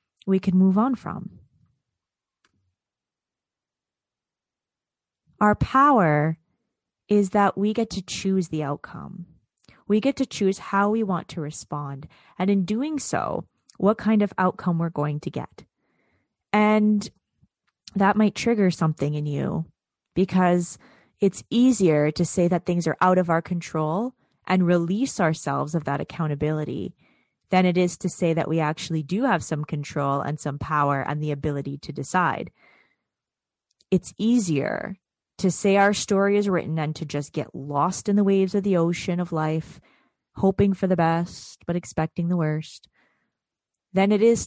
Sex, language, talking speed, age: female, English, 150 wpm, 20-39